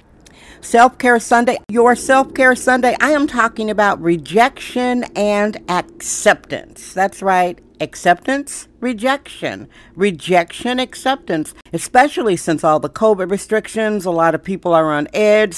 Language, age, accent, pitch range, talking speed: English, 50-69, American, 180-240 Hz, 120 wpm